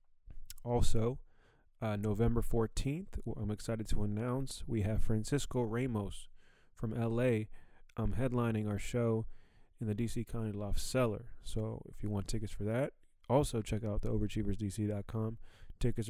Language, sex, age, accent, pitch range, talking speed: English, male, 20-39, American, 105-120 Hz, 140 wpm